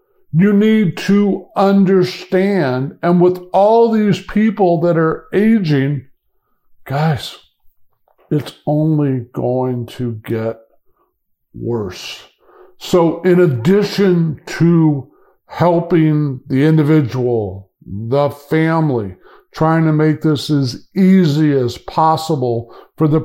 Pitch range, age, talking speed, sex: 145-195 Hz, 50-69, 100 wpm, male